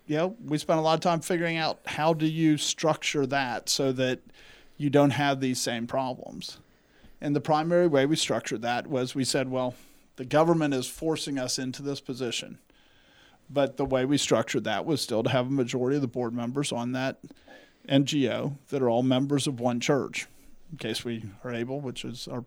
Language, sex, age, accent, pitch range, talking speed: English, male, 40-59, American, 130-150 Hz, 205 wpm